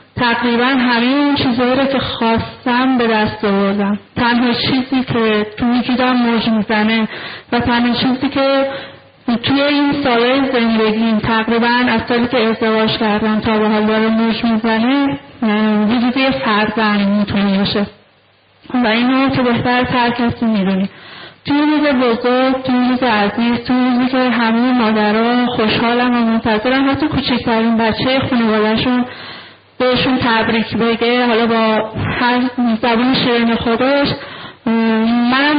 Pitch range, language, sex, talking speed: 220-250 Hz, Persian, female, 130 wpm